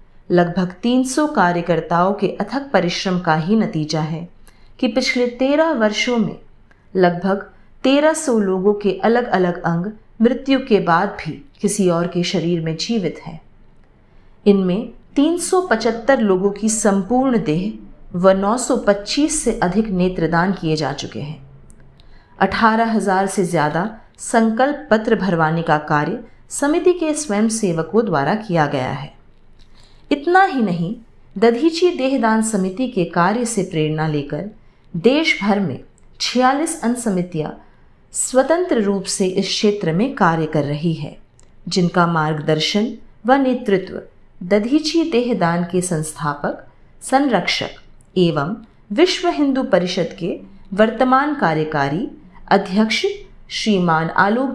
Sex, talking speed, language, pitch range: female, 120 wpm, Hindi, 170-245 Hz